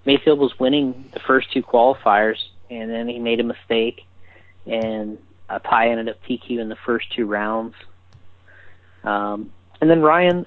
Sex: male